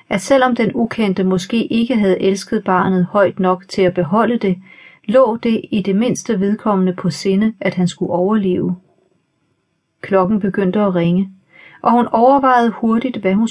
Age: 40-59